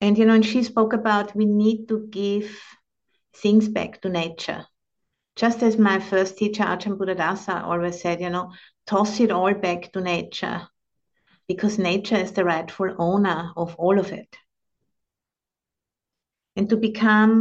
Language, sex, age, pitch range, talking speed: English, female, 50-69, 175-210 Hz, 155 wpm